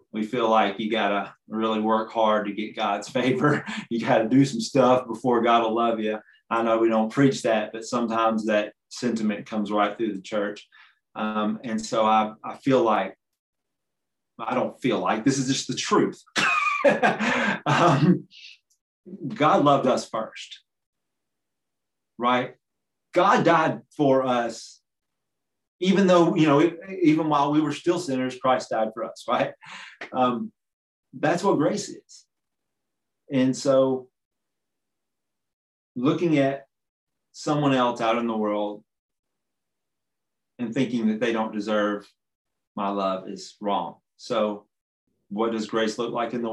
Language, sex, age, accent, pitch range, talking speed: English, male, 30-49, American, 110-135 Hz, 145 wpm